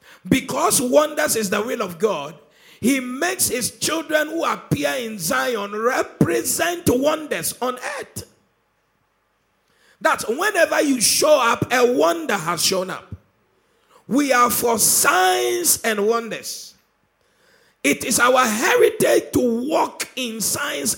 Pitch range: 210-310 Hz